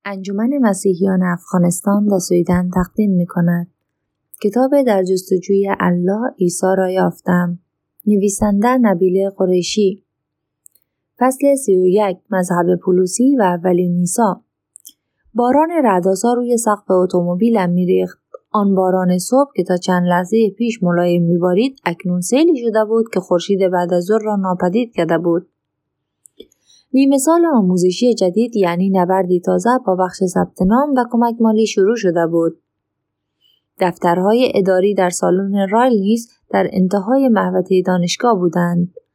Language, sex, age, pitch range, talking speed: Persian, female, 30-49, 180-225 Hz, 125 wpm